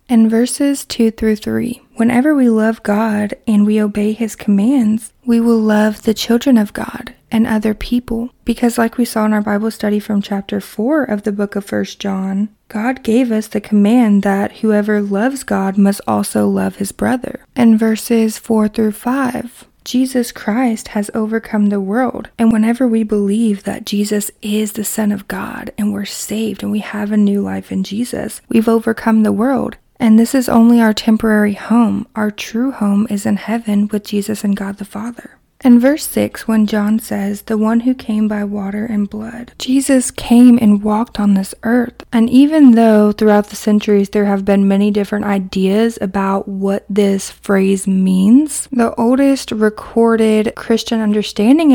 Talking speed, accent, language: 180 wpm, American, English